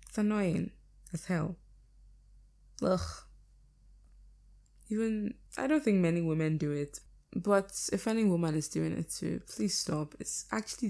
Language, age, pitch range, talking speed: English, 20-39, 150-175 Hz, 130 wpm